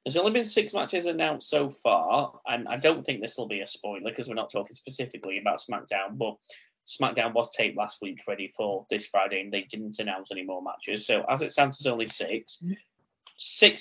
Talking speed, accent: 215 wpm, British